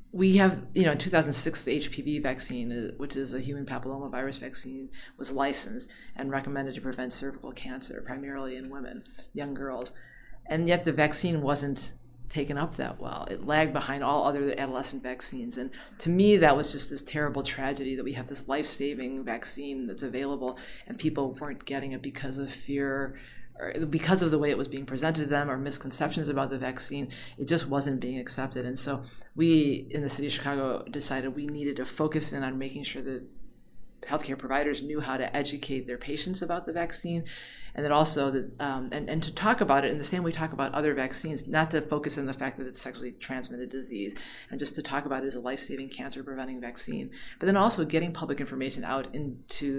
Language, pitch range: English, 130-150 Hz